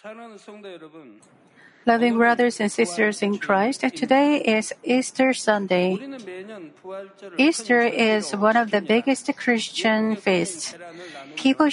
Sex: female